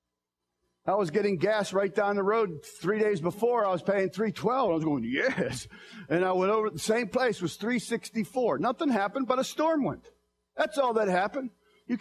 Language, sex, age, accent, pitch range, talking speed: English, male, 50-69, American, 200-255 Hz, 205 wpm